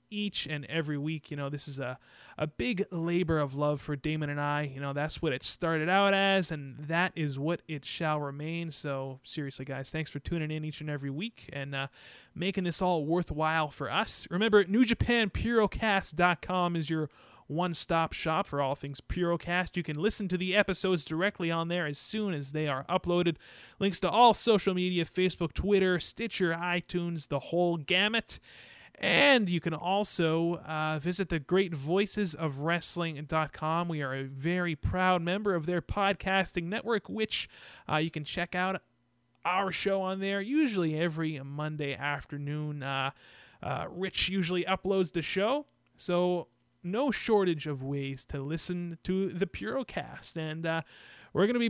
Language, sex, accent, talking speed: English, male, American, 165 wpm